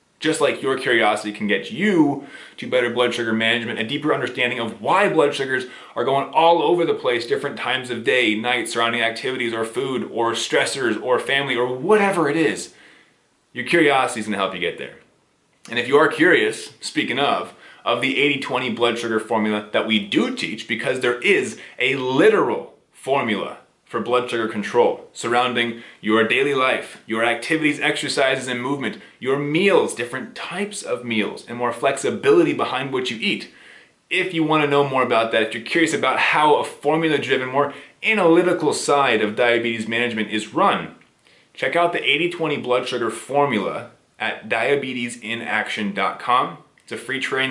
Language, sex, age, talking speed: English, male, 20-39, 170 wpm